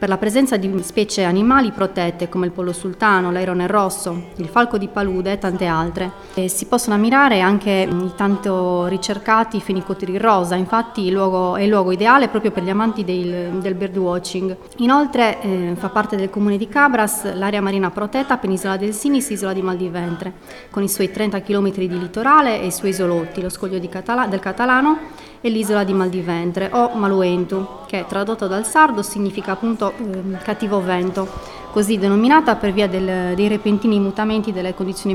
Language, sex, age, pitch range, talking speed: Italian, female, 30-49, 185-215 Hz, 175 wpm